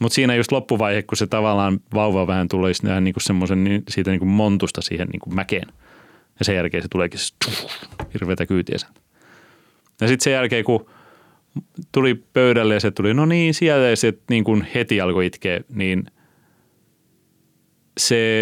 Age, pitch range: 30-49, 95-115 Hz